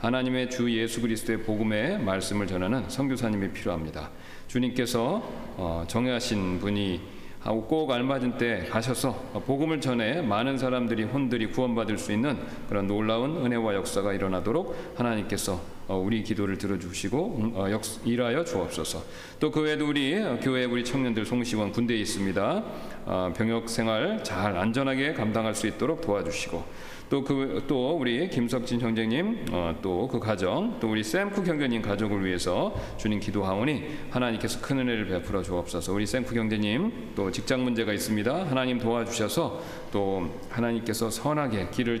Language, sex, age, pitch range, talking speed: English, male, 40-59, 100-125 Hz, 120 wpm